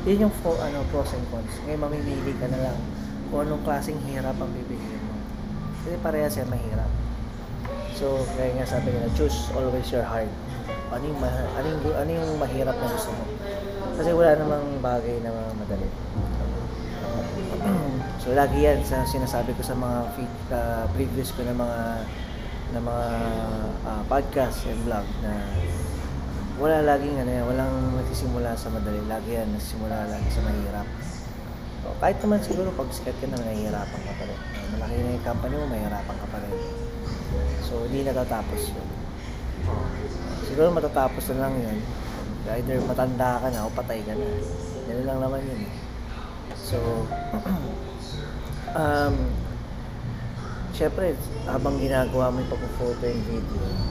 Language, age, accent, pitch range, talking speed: Filipino, 20-39, native, 85-130 Hz, 145 wpm